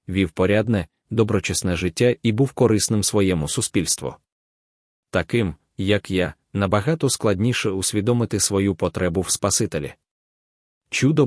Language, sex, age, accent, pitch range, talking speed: Ukrainian, male, 30-49, native, 90-110 Hz, 105 wpm